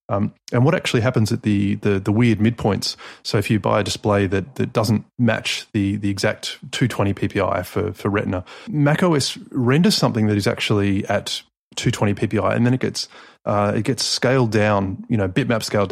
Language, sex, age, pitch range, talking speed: English, male, 30-49, 105-125 Hz, 190 wpm